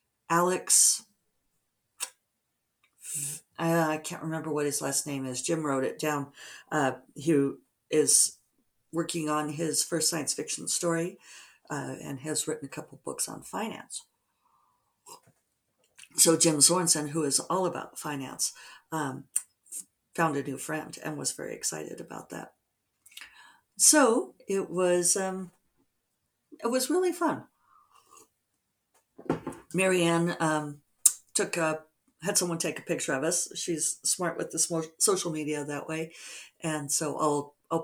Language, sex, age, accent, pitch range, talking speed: English, female, 50-69, American, 150-185 Hz, 130 wpm